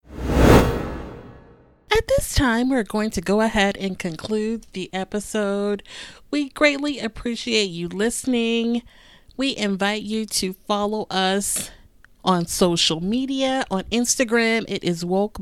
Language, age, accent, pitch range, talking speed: English, 30-49, American, 185-230 Hz, 120 wpm